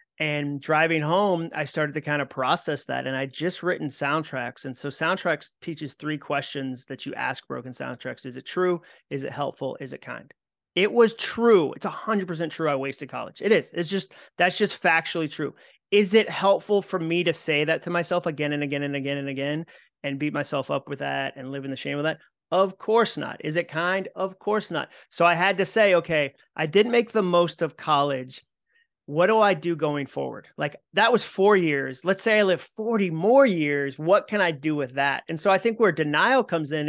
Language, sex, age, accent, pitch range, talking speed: English, male, 30-49, American, 150-195 Hz, 220 wpm